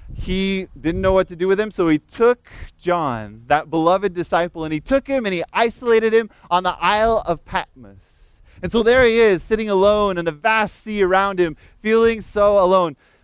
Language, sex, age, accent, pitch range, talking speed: English, male, 20-39, American, 165-205 Hz, 200 wpm